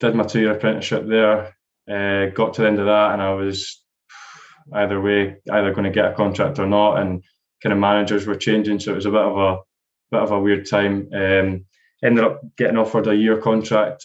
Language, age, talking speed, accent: English, 20-39, 220 wpm, British